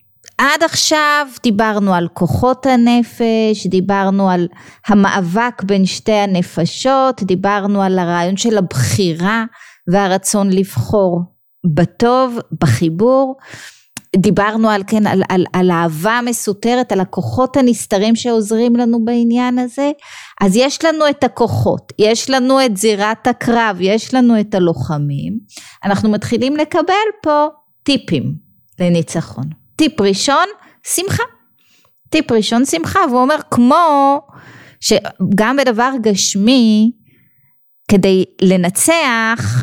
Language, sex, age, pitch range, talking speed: Hebrew, female, 30-49, 190-260 Hz, 100 wpm